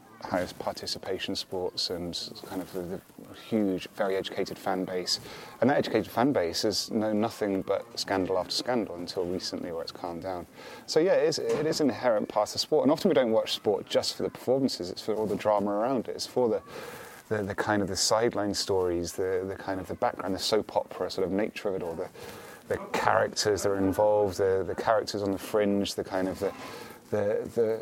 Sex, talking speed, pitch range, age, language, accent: male, 215 wpm, 100-115 Hz, 30-49, English, British